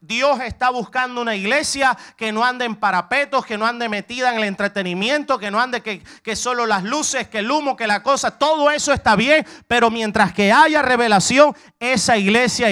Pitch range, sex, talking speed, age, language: 155-230 Hz, male, 200 wpm, 30-49, English